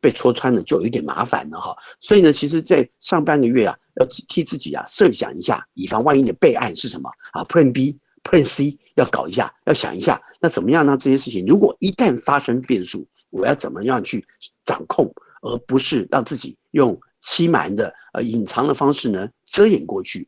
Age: 50-69